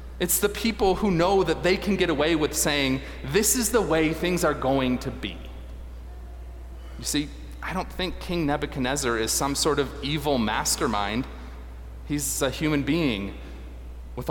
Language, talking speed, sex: English, 165 wpm, male